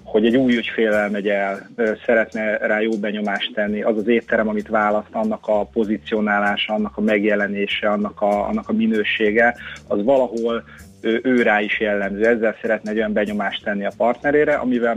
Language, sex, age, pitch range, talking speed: Hungarian, male, 30-49, 105-125 Hz, 170 wpm